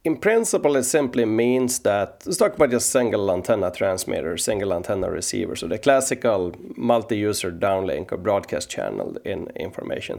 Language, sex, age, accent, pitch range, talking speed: English, male, 30-49, Swedish, 115-150 Hz, 155 wpm